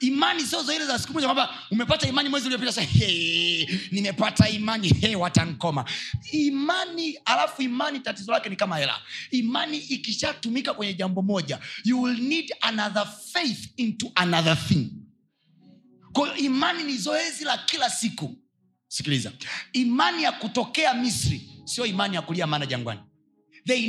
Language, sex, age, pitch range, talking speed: Swahili, male, 30-49, 195-280 Hz, 140 wpm